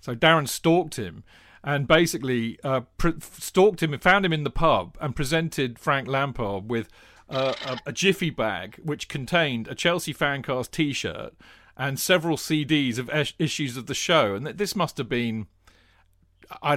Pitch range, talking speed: 115-165 Hz, 165 wpm